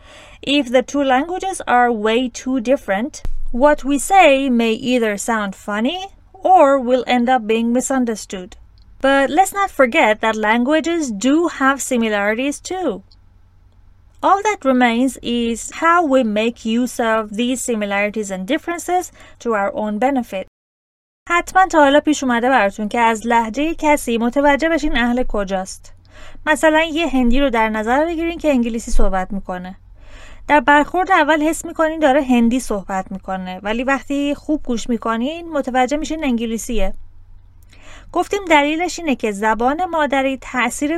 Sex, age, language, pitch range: female, 30-49, Persian, 215-290 Hz